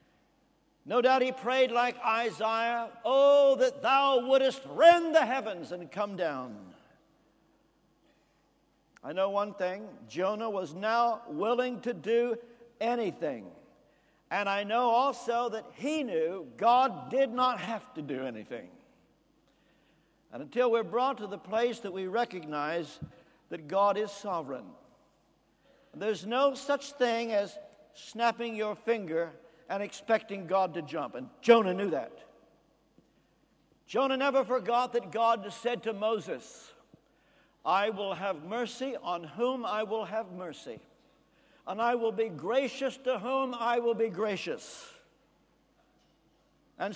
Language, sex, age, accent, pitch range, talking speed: English, male, 60-79, American, 200-255 Hz, 130 wpm